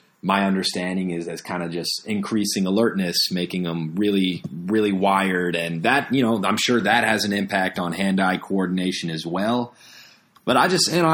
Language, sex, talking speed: English, male, 185 wpm